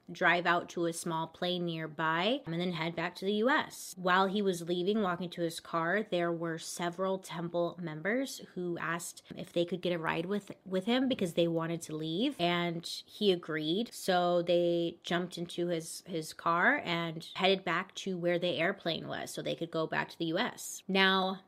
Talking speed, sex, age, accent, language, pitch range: 195 wpm, female, 20-39, American, English, 170-200 Hz